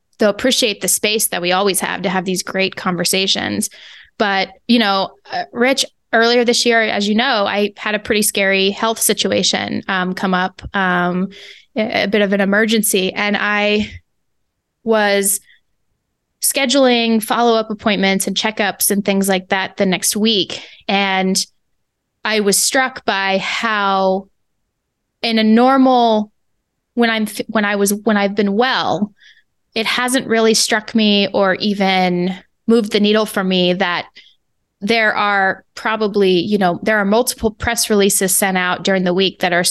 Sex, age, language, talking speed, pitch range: female, 20-39, English, 155 wpm, 195-225 Hz